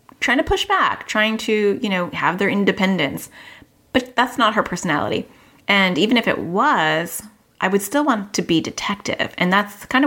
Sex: female